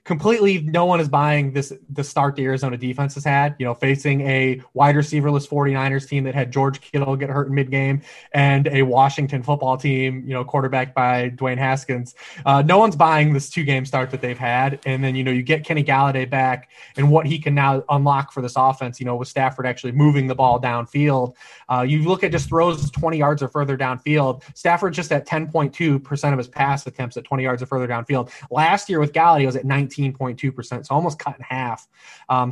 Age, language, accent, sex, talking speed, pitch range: 20-39, English, American, male, 220 wpm, 130-155 Hz